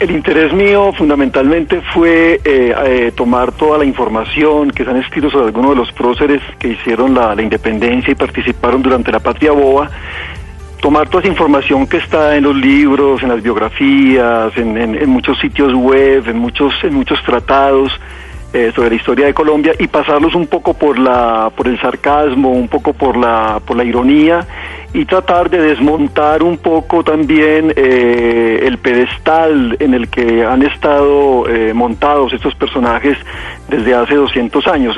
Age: 40-59